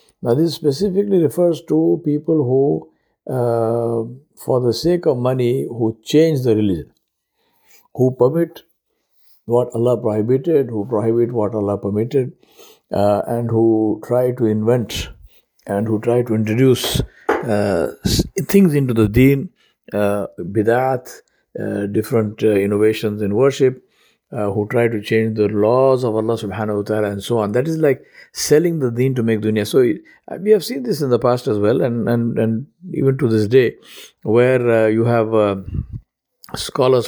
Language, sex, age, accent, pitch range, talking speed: English, male, 60-79, Indian, 105-130 Hz, 160 wpm